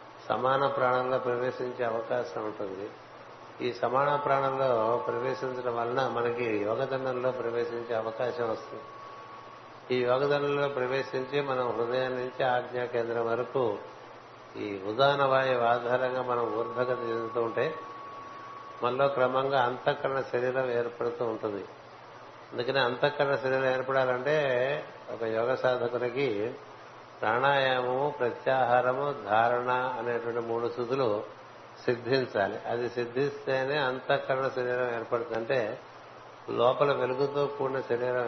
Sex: male